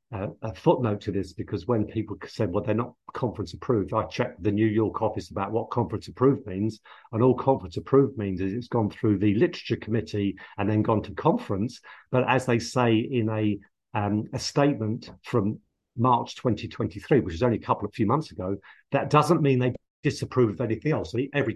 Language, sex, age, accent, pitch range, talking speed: English, male, 50-69, British, 105-145 Hz, 200 wpm